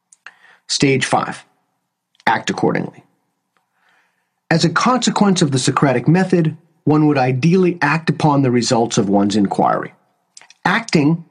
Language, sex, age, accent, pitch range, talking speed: English, male, 40-59, American, 130-170 Hz, 115 wpm